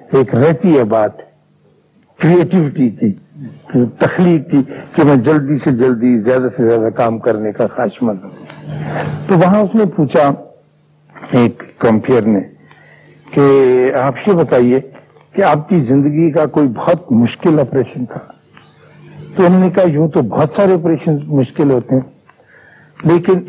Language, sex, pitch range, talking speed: Urdu, male, 130-165 Hz, 140 wpm